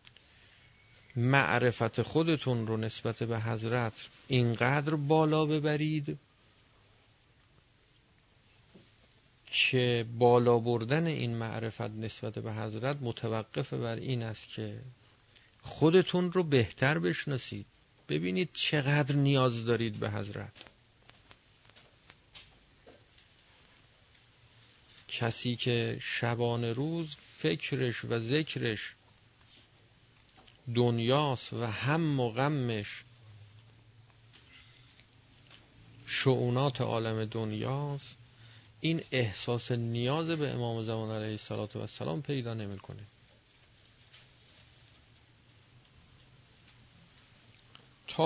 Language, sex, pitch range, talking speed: Persian, male, 115-130 Hz, 75 wpm